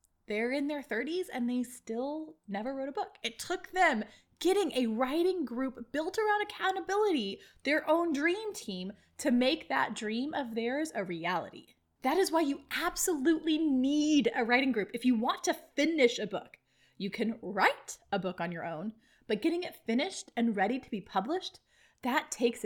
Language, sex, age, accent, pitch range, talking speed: English, female, 20-39, American, 205-320 Hz, 180 wpm